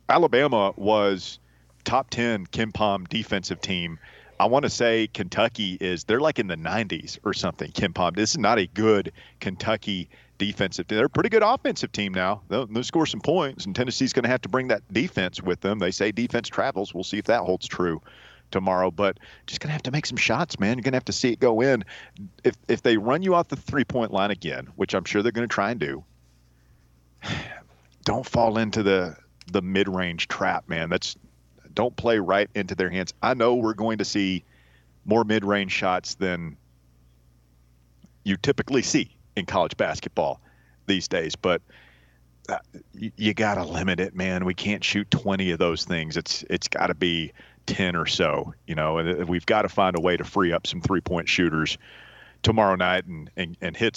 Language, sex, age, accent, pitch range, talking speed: English, male, 40-59, American, 85-110 Hz, 200 wpm